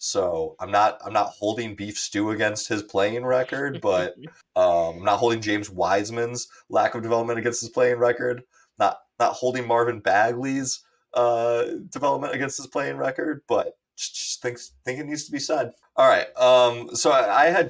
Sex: male